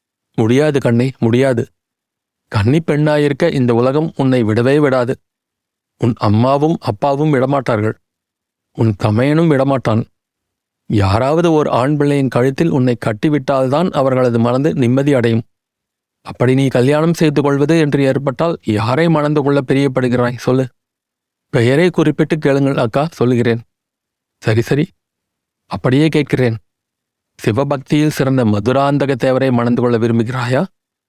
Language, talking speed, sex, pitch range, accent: Tamil, 110 wpm, male, 120-145 Hz, native